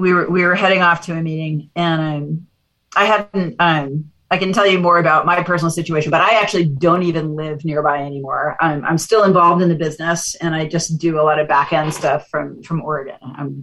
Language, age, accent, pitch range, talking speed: English, 40-59, American, 160-205 Hz, 230 wpm